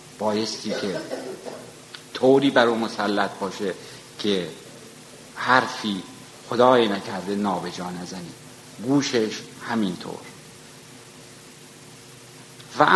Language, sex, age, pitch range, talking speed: Persian, male, 50-69, 105-135 Hz, 75 wpm